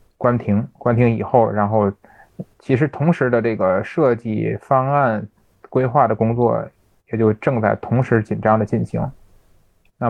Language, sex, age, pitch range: Chinese, male, 20-39, 105-120 Hz